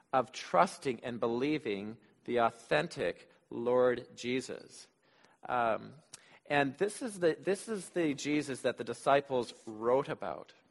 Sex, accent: male, American